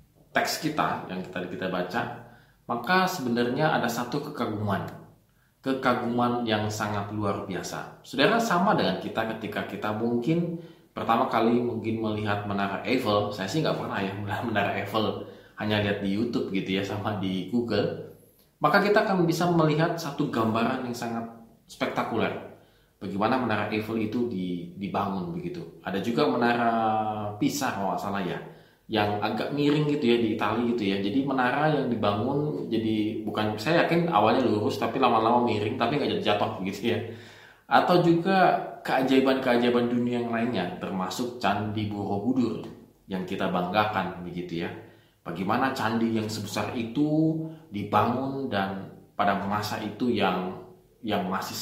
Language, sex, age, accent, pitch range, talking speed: Indonesian, male, 20-39, native, 100-120 Hz, 145 wpm